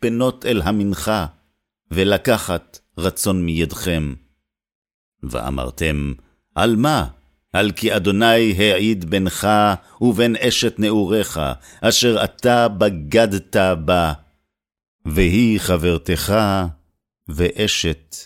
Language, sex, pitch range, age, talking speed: Hebrew, male, 75-105 Hz, 50-69, 80 wpm